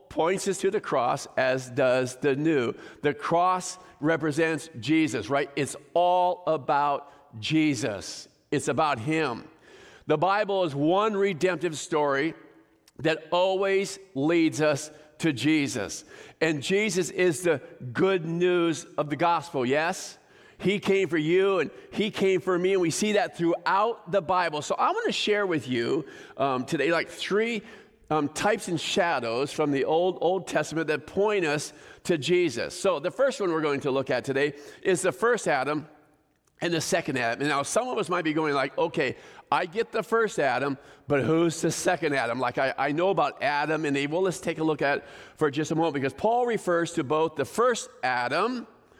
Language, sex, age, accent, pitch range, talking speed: English, male, 50-69, American, 145-185 Hz, 180 wpm